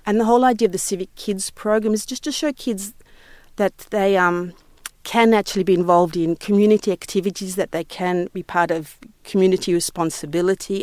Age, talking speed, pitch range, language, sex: 50-69, 175 wpm, 180-220 Hz, English, female